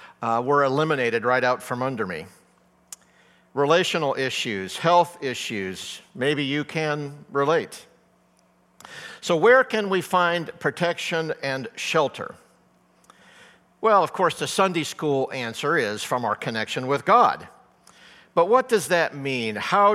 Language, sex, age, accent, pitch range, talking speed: English, male, 50-69, American, 130-170 Hz, 130 wpm